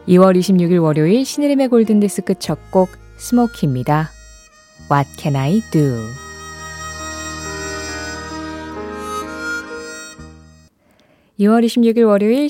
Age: 20-39